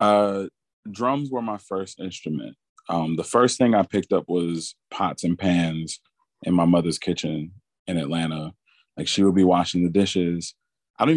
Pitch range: 80-90 Hz